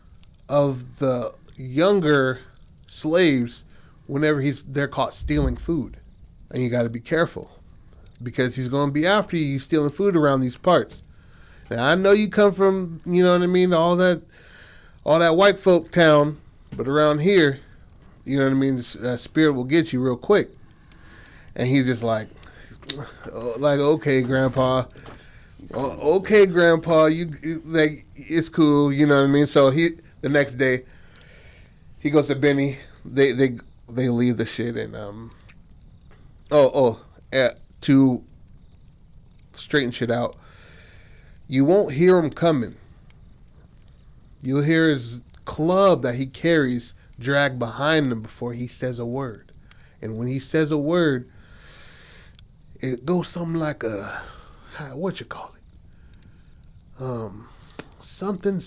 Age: 30-49